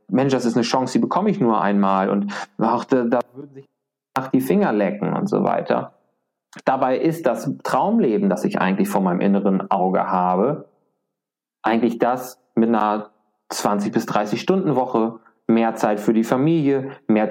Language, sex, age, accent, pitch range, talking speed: German, male, 30-49, German, 100-140 Hz, 170 wpm